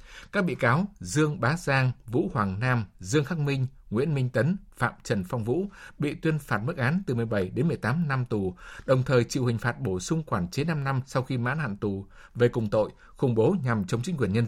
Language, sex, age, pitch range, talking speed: Vietnamese, male, 60-79, 110-150 Hz, 230 wpm